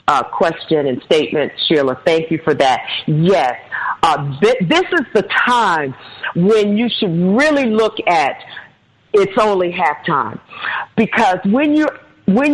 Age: 50-69